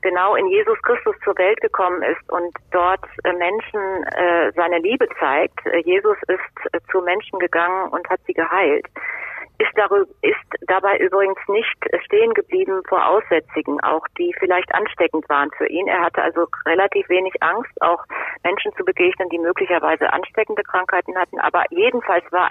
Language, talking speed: German, 150 wpm